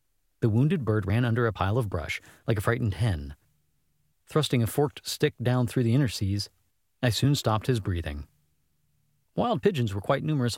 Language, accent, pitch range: English, American, 100-145 Hz